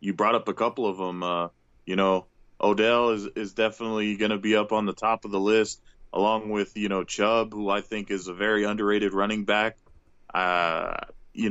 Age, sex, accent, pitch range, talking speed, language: 20-39, male, American, 95-120 Hz, 210 wpm, English